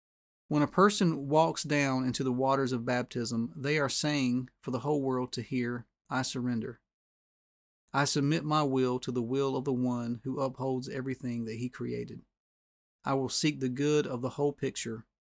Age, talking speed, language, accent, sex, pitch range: 30-49, 180 wpm, English, American, male, 120-140 Hz